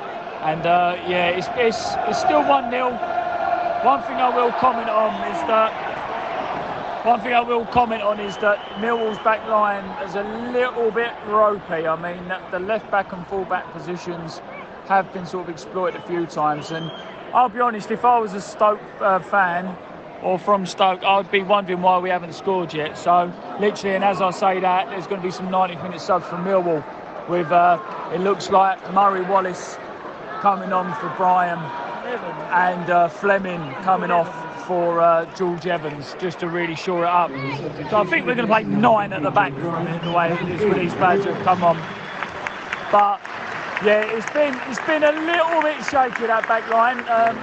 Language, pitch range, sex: English, 175-225 Hz, male